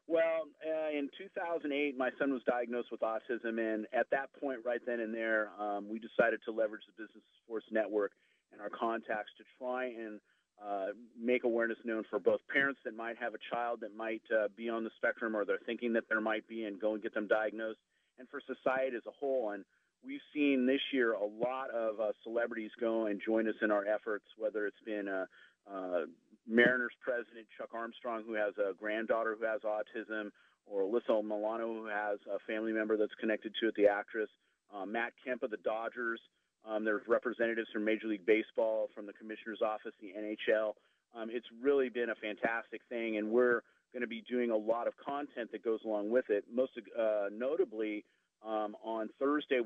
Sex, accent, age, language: male, American, 40-59, English